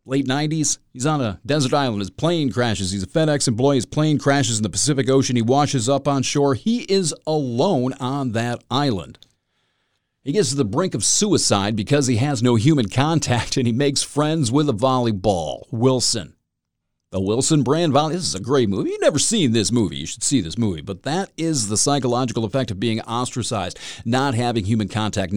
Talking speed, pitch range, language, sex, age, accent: 200 wpm, 110-140 Hz, English, male, 40-59, American